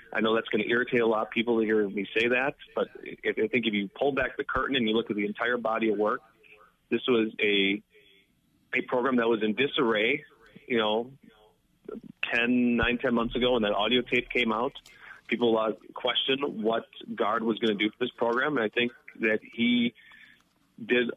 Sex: male